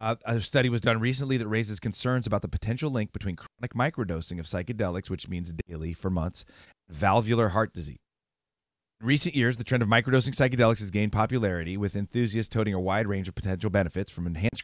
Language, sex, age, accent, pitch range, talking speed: English, male, 30-49, American, 95-125 Hz, 200 wpm